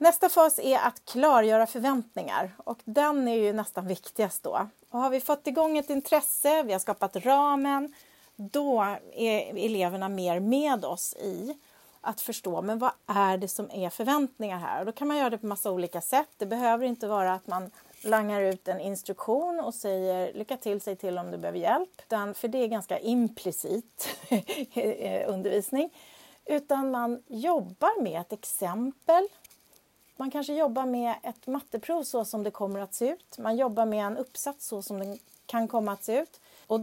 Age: 40-59